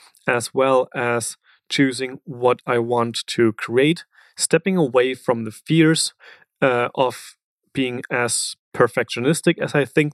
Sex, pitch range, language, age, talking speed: male, 120-140 Hz, English, 30-49, 130 wpm